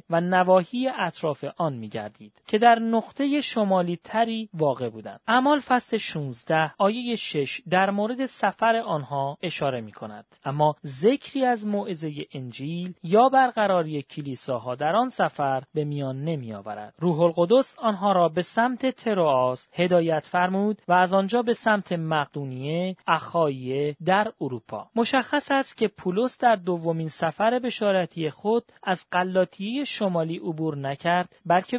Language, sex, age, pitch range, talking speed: Persian, male, 40-59, 150-220 Hz, 135 wpm